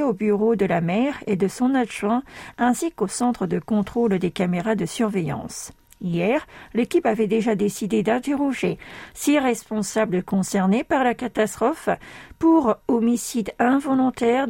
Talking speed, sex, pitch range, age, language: 135 wpm, female, 190-245 Hz, 50-69, French